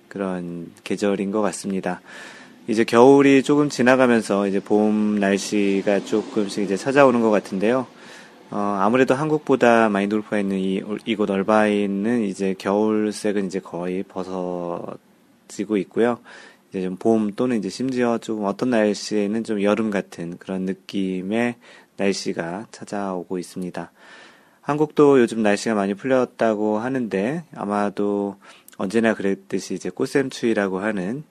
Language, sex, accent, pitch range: Korean, male, native, 95-115 Hz